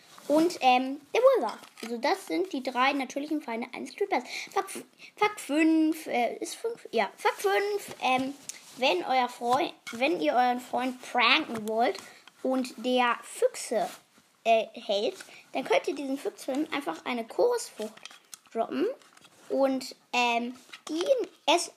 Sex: female